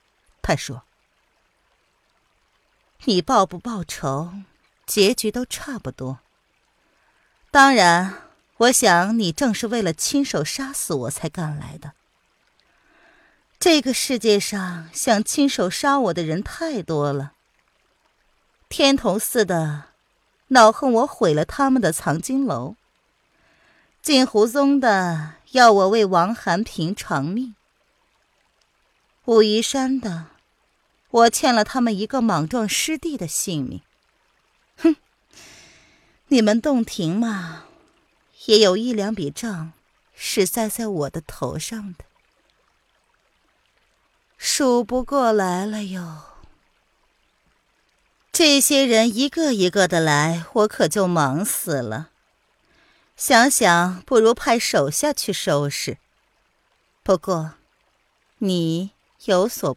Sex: female